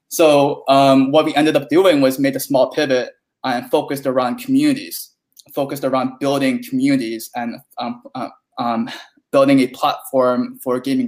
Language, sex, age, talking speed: English, male, 20-39, 155 wpm